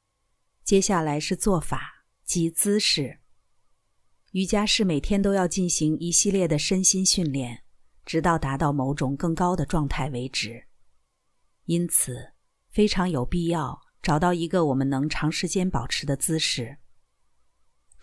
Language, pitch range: Chinese, 135-180 Hz